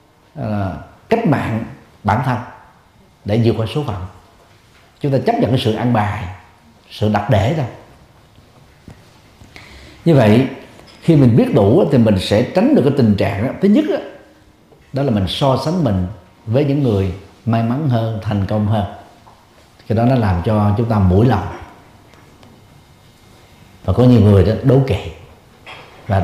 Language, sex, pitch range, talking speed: Vietnamese, male, 100-130 Hz, 165 wpm